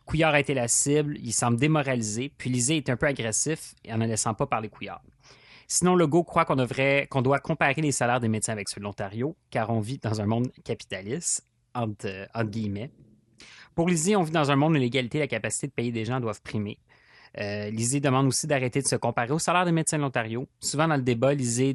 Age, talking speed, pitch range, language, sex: 30-49, 230 wpm, 110-140 Hz, French, male